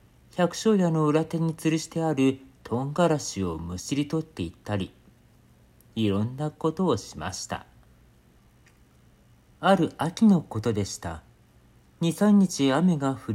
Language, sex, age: Japanese, male, 40-59